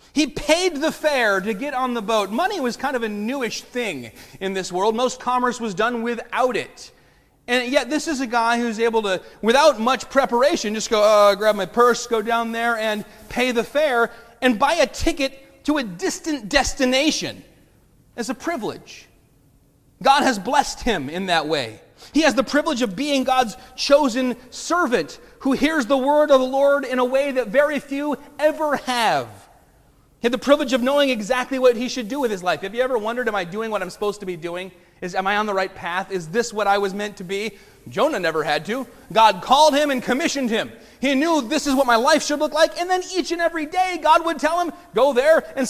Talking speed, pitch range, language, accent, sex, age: 220 wpm, 230-290 Hz, English, American, male, 30-49